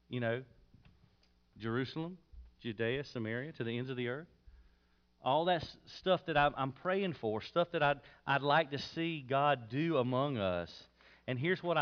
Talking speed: 160 wpm